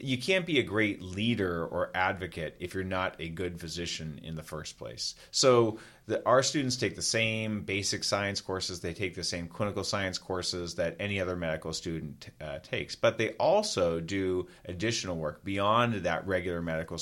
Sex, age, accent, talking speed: male, 30-49, American, 180 wpm